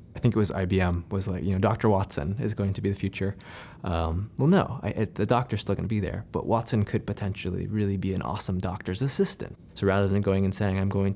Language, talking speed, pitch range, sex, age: English, 240 wpm, 95-120 Hz, male, 20-39